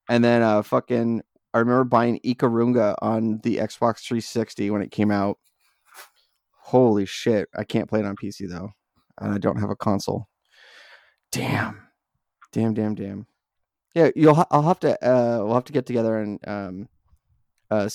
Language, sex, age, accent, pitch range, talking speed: English, male, 20-39, American, 110-130 Hz, 165 wpm